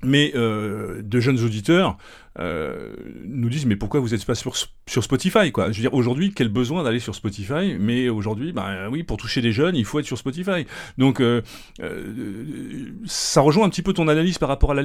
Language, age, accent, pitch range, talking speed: French, 40-59, French, 110-140 Hz, 220 wpm